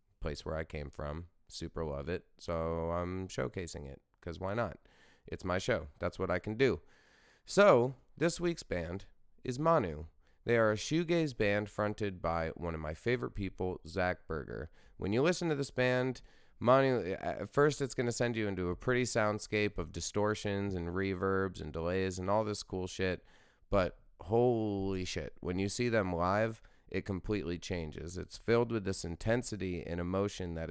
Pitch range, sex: 85-120 Hz, male